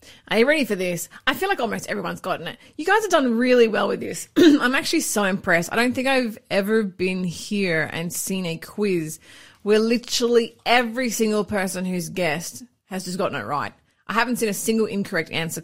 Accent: Australian